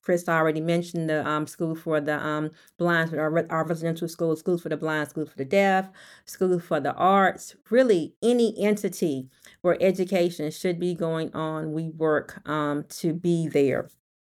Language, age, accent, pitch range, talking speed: English, 40-59, American, 150-170 Hz, 170 wpm